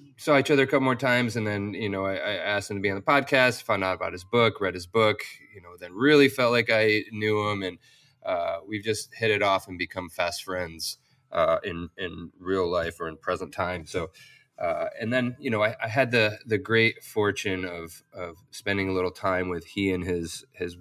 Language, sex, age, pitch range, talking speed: English, male, 30-49, 90-115 Hz, 235 wpm